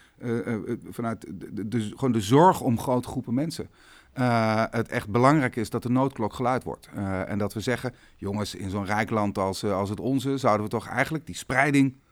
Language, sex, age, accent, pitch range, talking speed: Dutch, male, 40-59, Dutch, 100-125 Hz, 205 wpm